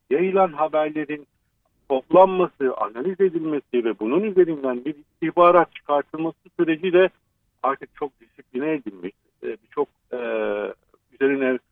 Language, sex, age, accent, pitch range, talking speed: Turkish, male, 50-69, native, 125-165 Hz, 110 wpm